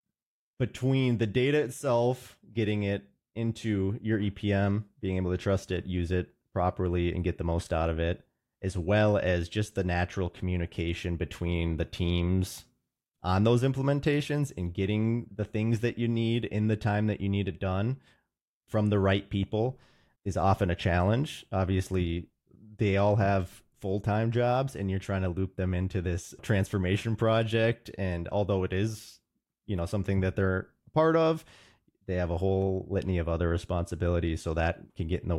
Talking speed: 170 wpm